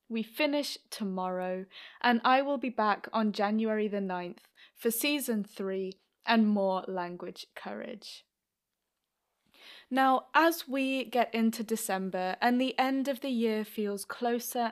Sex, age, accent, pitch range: female, 20-39, British, 205-260 Hz